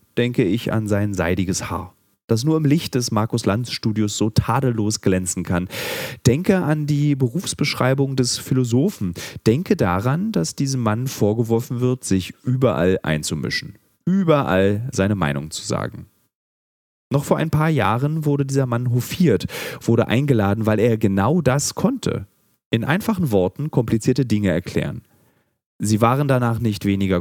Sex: male